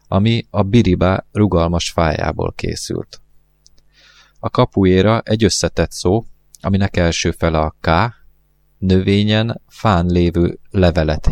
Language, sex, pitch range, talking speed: Hungarian, male, 85-100 Hz, 105 wpm